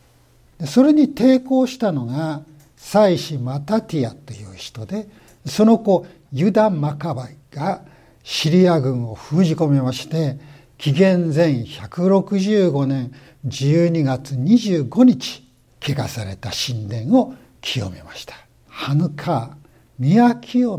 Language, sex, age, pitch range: Japanese, male, 60-79, 130-185 Hz